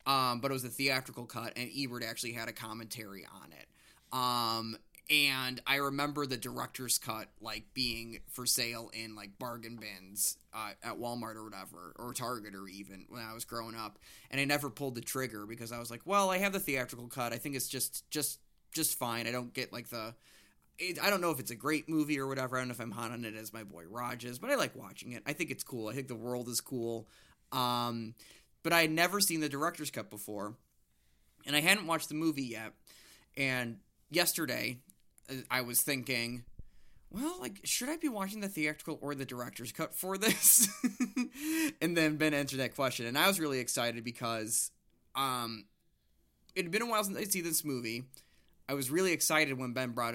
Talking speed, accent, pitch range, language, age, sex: 210 wpm, American, 115-150 Hz, English, 20-39, male